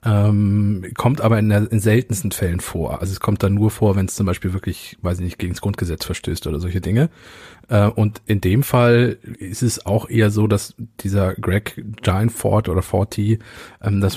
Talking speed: 190 wpm